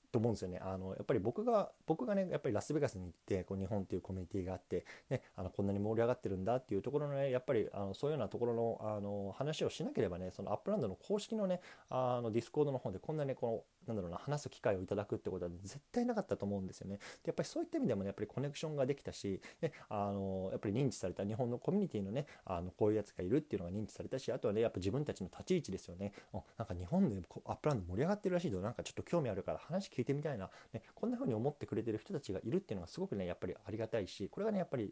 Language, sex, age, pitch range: Japanese, male, 20-39, 95-140 Hz